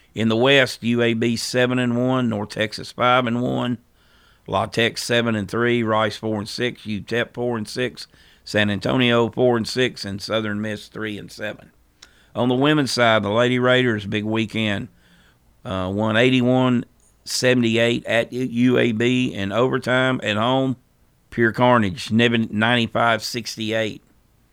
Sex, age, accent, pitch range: male, 50-69, American, 105-125 Hz